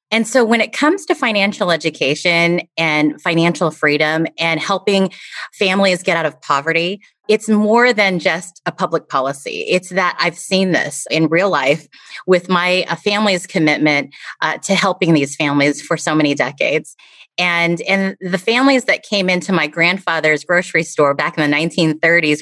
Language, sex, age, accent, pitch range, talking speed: English, female, 30-49, American, 165-200 Hz, 165 wpm